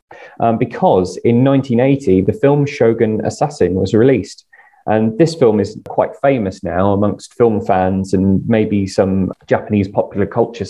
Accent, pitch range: British, 100-120 Hz